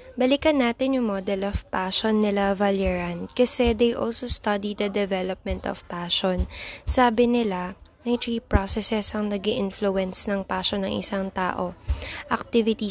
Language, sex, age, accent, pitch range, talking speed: Filipino, female, 20-39, native, 195-255 Hz, 140 wpm